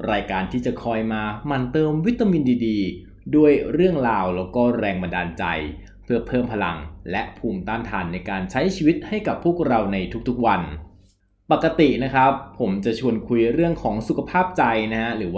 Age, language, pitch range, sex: 20-39, Thai, 100-130 Hz, male